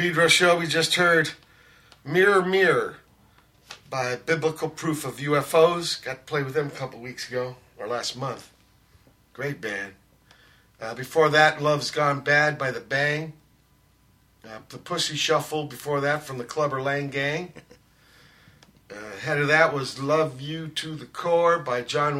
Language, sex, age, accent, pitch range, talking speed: English, male, 50-69, American, 130-155 Hz, 150 wpm